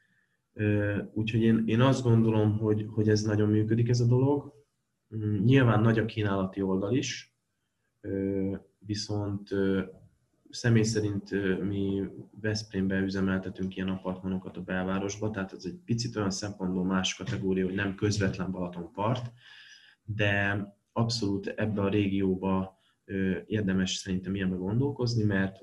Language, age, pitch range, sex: Hungarian, 20-39, 95-115 Hz, male